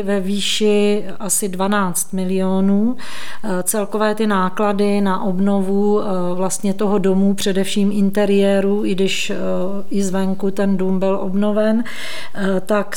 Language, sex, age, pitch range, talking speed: Czech, female, 40-59, 195-215 Hz, 110 wpm